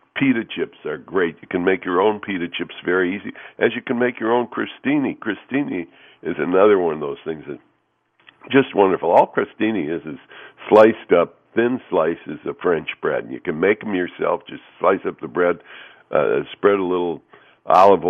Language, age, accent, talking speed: English, 60-79, American, 190 wpm